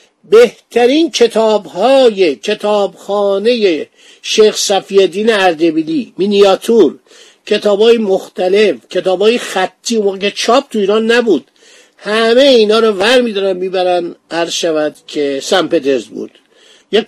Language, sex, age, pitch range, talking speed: Persian, male, 50-69, 160-220 Hz, 110 wpm